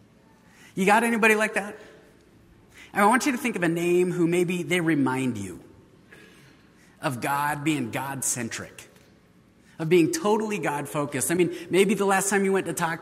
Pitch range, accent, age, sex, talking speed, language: 135-175 Hz, American, 30-49, male, 170 wpm, English